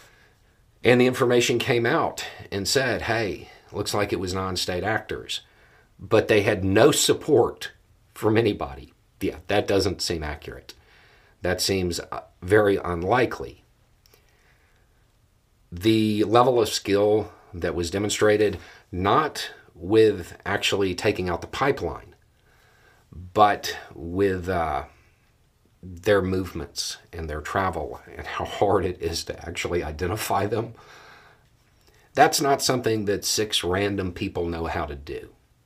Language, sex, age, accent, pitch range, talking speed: English, male, 40-59, American, 85-105 Hz, 120 wpm